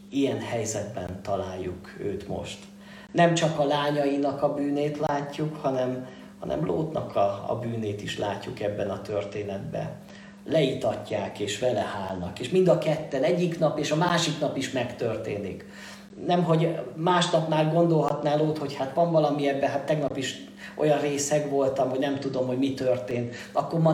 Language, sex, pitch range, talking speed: Hungarian, male, 115-160 Hz, 160 wpm